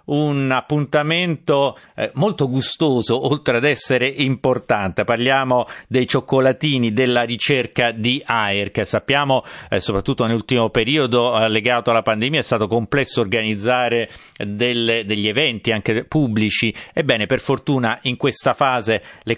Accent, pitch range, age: native, 115-140 Hz, 40-59